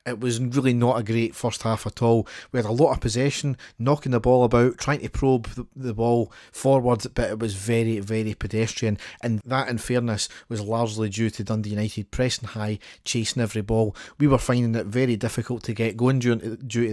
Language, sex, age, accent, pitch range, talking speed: English, male, 40-59, British, 110-125 Hz, 200 wpm